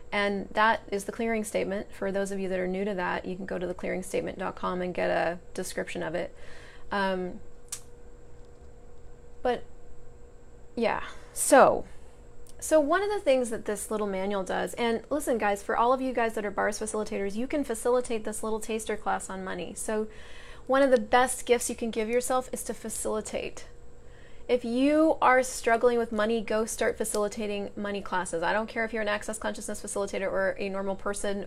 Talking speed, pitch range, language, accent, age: 185 wpm, 190-235 Hz, English, American, 20-39